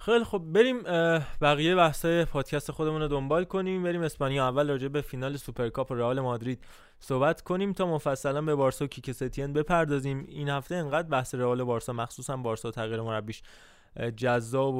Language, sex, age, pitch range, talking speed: Persian, male, 20-39, 130-155 Hz, 160 wpm